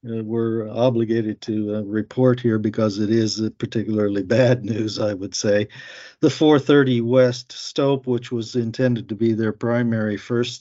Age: 50-69